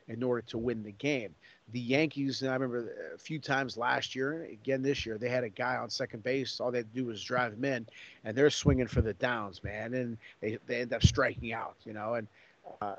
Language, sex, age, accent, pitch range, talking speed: English, male, 40-59, American, 110-135 Hz, 245 wpm